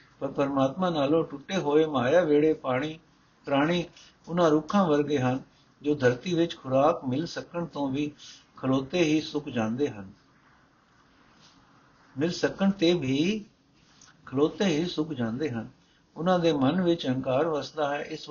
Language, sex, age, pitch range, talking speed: Punjabi, male, 60-79, 135-170 Hz, 75 wpm